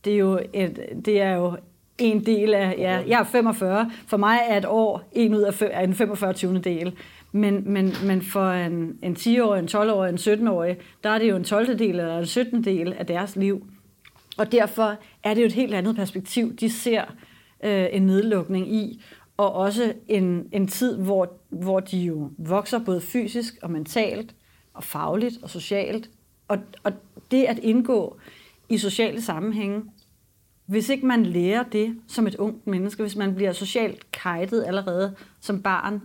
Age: 30-49